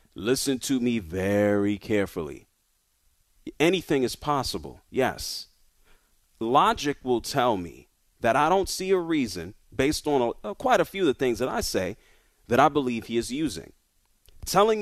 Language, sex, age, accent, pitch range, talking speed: English, male, 30-49, American, 130-215 Hz, 155 wpm